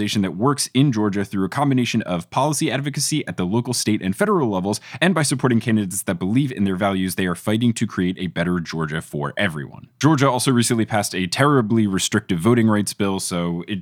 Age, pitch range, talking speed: 20-39, 100-155 Hz, 210 wpm